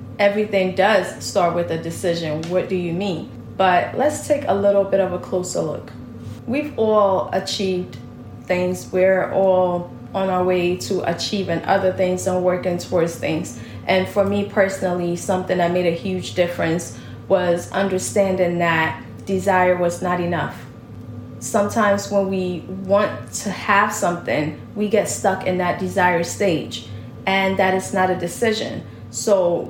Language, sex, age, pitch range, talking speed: English, female, 20-39, 175-200 Hz, 150 wpm